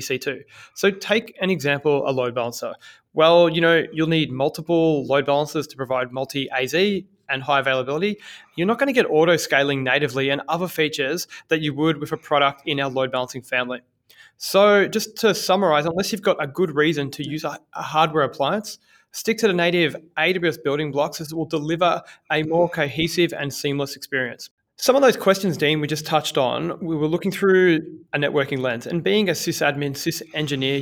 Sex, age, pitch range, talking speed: male, 20-39, 140-175 Hz, 185 wpm